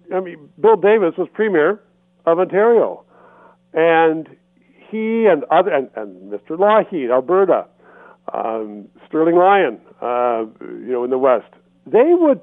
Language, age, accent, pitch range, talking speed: English, 50-69, American, 150-215 Hz, 135 wpm